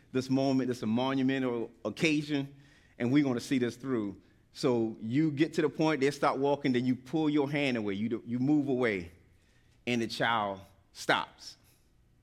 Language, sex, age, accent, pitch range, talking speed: English, male, 30-49, American, 105-140 Hz, 185 wpm